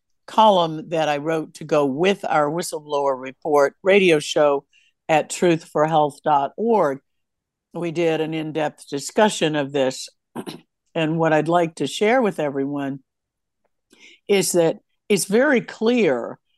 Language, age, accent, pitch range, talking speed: English, 60-79, American, 145-185 Hz, 125 wpm